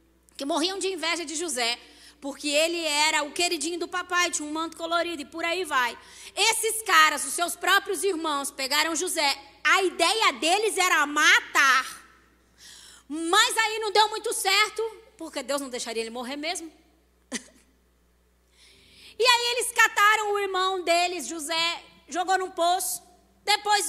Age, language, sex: 20-39, Portuguese, female